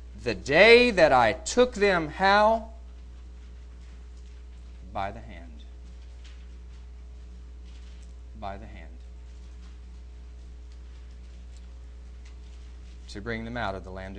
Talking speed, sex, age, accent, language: 85 wpm, male, 40-59, American, English